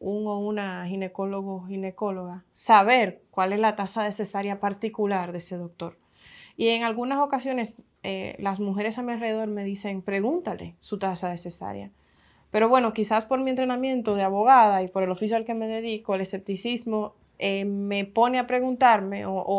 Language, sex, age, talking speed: Spanish, female, 20-39, 180 wpm